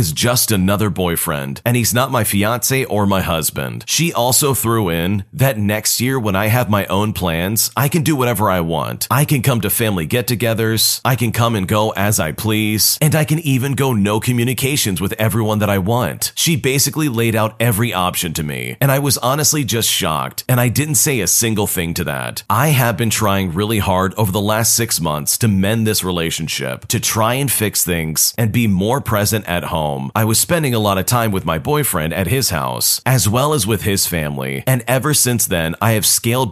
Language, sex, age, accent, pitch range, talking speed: English, male, 40-59, American, 95-125 Hz, 215 wpm